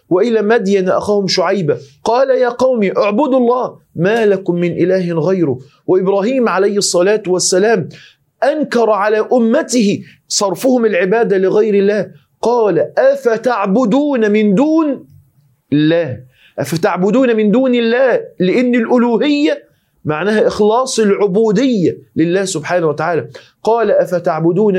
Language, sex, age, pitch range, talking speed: Arabic, male, 40-59, 180-240 Hz, 105 wpm